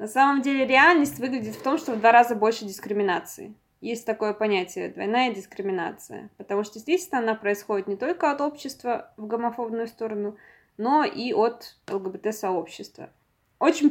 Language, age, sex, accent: Russian, 20-39, female, native